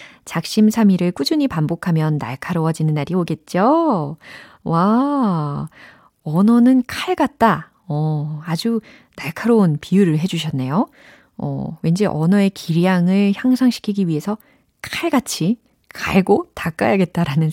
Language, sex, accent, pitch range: Korean, female, native, 155-230 Hz